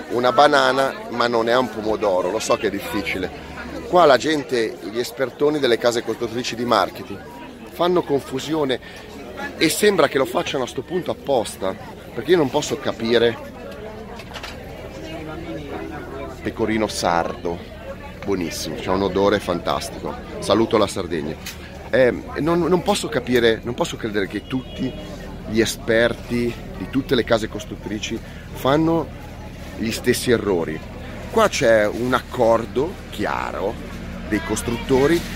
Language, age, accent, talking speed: Italian, 30-49, native, 130 wpm